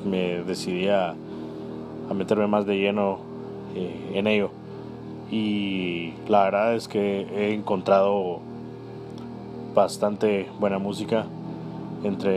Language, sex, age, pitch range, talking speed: Spanish, male, 20-39, 90-115 Hz, 105 wpm